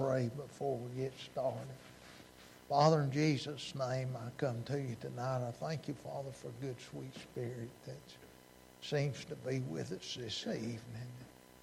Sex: male